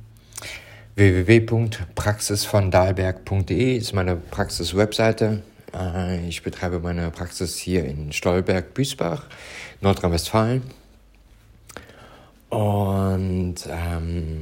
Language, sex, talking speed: German, male, 60 wpm